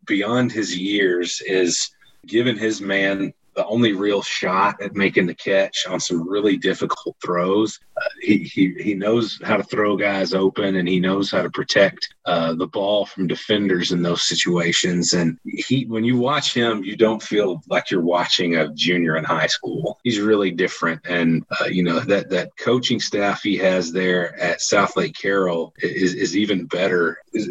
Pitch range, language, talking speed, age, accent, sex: 90-105 Hz, English, 185 wpm, 40-59, American, male